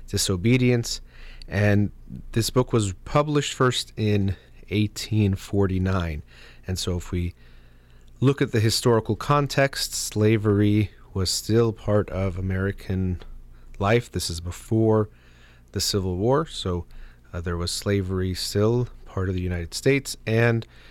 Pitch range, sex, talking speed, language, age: 80-110 Hz, male, 125 wpm, English, 30-49